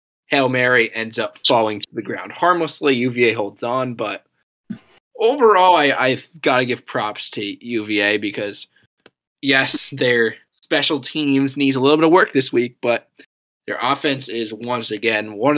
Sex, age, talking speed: male, 20-39, 160 wpm